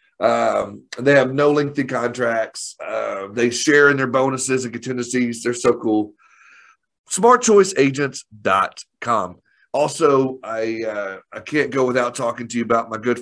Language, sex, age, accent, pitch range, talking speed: English, male, 40-59, American, 115-140 Hz, 140 wpm